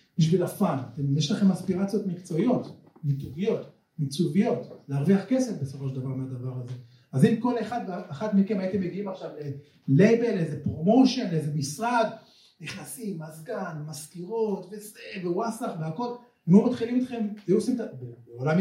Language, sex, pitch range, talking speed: Hebrew, male, 135-205 Hz, 130 wpm